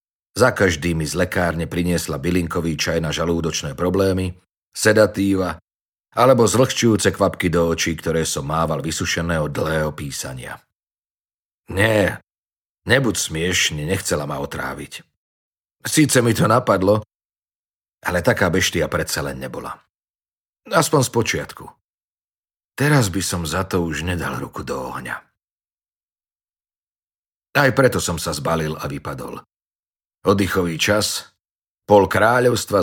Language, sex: Slovak, male